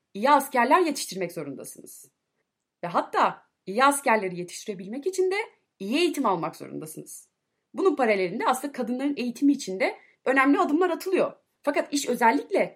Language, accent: Turkish, native